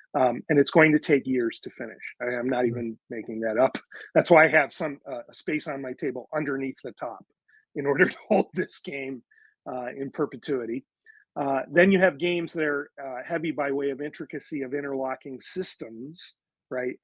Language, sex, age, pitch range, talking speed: English, male, 40-59, 130-165 Hz, 190 wpm